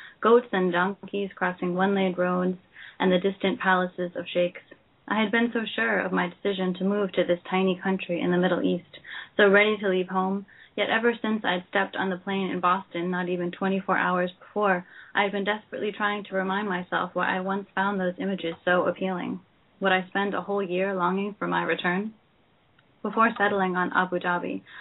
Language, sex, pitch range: English, female, 180-205 Hz